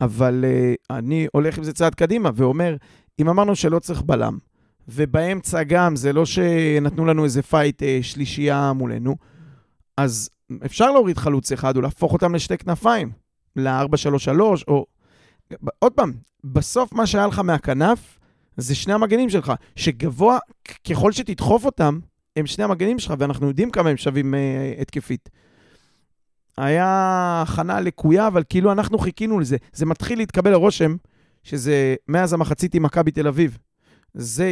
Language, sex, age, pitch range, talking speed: Hebrew, male, 40-59, 140-180 Hz, 145 wpm